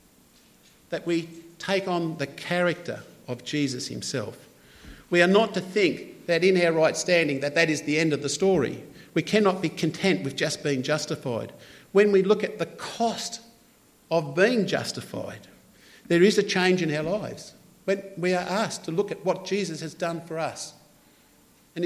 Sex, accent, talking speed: male, Australian, 175 wpm